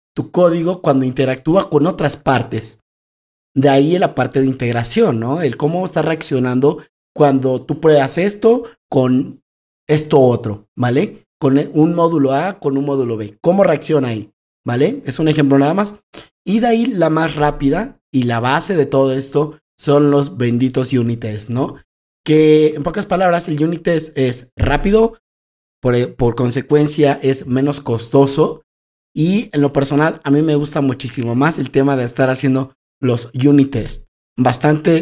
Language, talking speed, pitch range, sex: Spanish, 160 wpm, 125-150 Hz, male